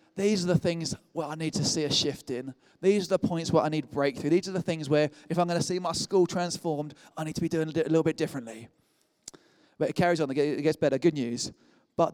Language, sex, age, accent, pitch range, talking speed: English, male, 20-39, British, 150-185 Hz, 260 wpm